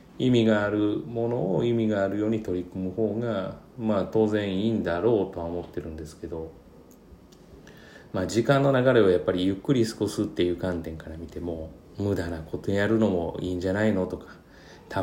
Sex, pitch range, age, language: male, 90-115 Hz, 30-49, Japanese